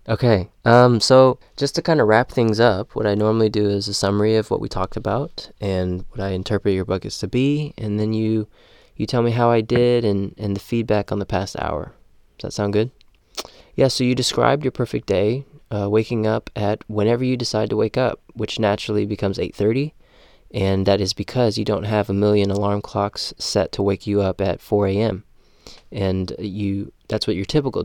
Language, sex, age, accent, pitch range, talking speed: English, male, 20-39, American, 100-110 Hz, 210 wpm